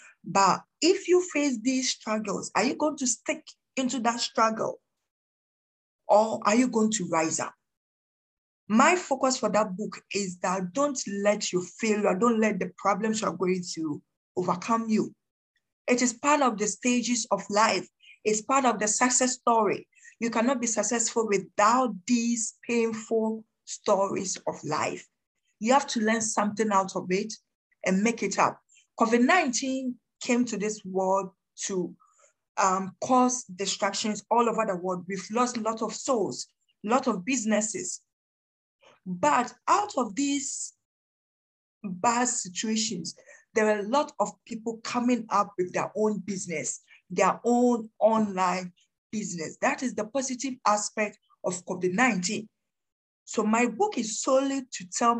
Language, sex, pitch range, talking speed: Hindi, female, 200-250 Hz, 150 wpm